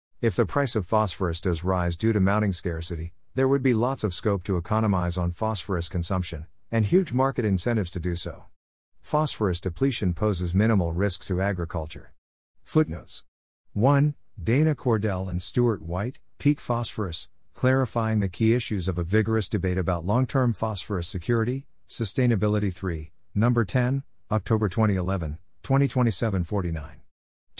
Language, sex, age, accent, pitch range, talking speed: English, male, 50-69, American, 90-115 Hz, 135 wpm